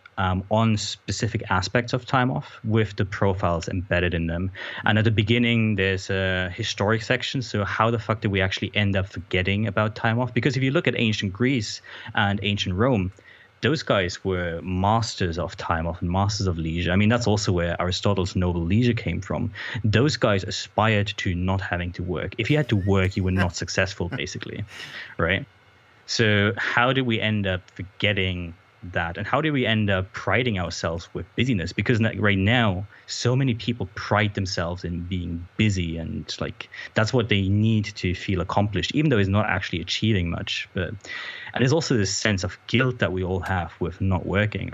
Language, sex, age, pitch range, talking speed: English, male, 20-39, 95-110 Hz, 195 wpm